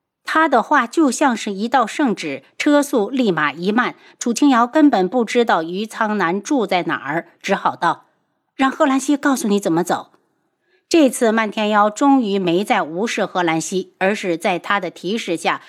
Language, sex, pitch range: Chinese, female, 200-275 Hz